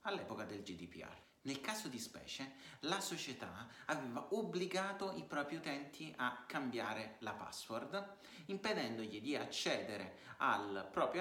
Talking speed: 125 wpm